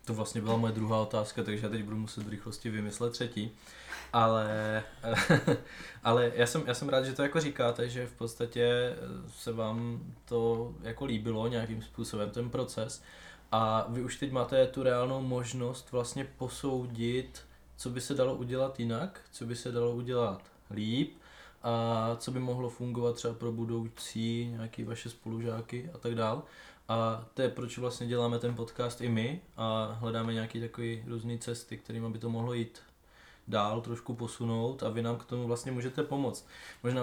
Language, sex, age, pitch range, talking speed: Czech, male, 20-39, 115-125 Hz, 170 wpm